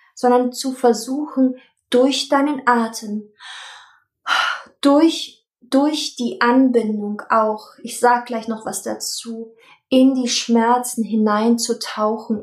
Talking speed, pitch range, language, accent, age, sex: 100 wpm, 225-260 Hz, German, German, 20-39, female